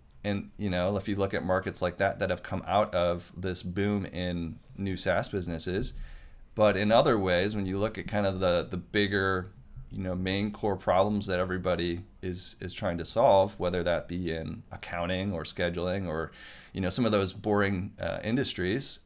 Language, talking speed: English, 195 wpm